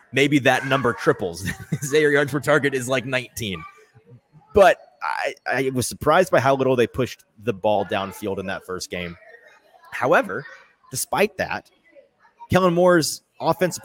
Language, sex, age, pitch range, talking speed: English, male, 30-49, 100-155 Hz, 145 wpm